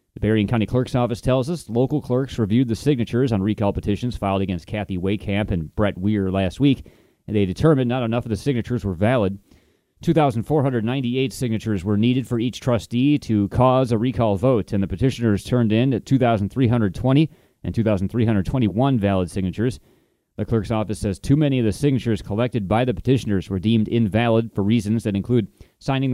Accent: American